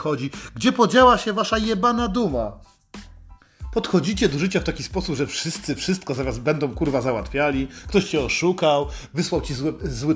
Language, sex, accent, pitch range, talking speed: Polish, male, native, 155-200 Hz, 165 wpm